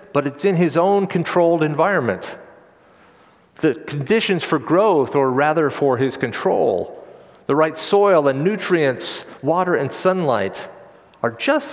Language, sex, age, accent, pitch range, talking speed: English, male, 50-69, American, 135-190 Hz, 135 wpm